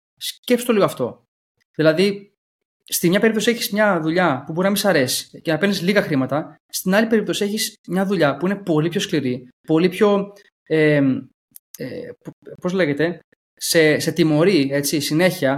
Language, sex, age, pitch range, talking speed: Greek, male, 20-39, 140-180 Hz, 170 wpm